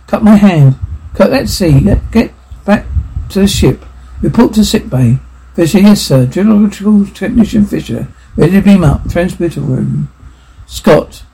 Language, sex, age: English, male, 60-79